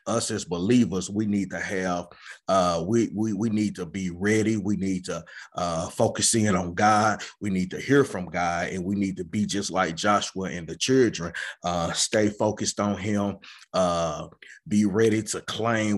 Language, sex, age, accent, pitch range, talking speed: English, male, 30-49, American, 95-110 Hz, 190 wpm